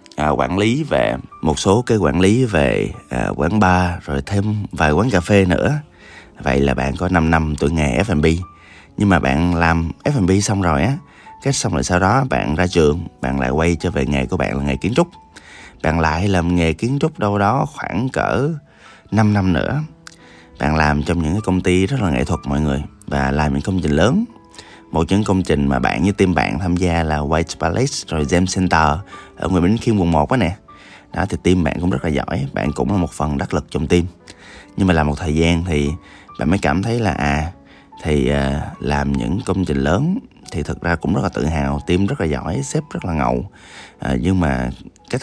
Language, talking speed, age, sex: Vietnamese, 225 wpm, 20-39, male